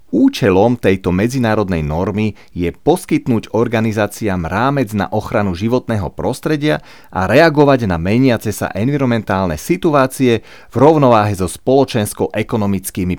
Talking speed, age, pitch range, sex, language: 105 wpm, 30-49, 95-125 Hz, male, Slovak